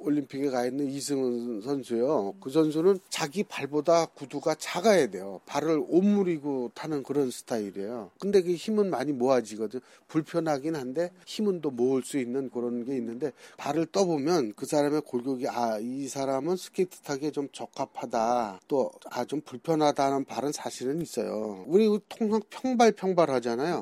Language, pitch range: Korean, 125-170 Hz